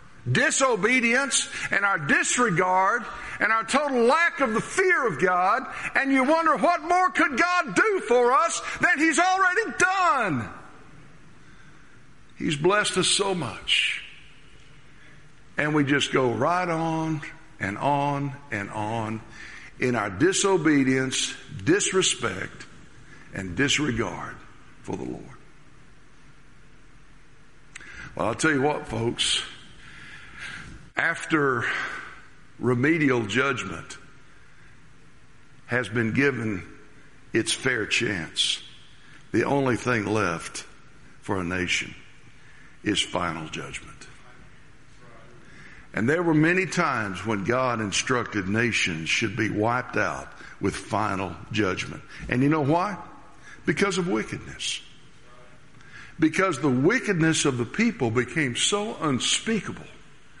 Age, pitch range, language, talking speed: 60-79, 125-210 Hz, English, 105 wpm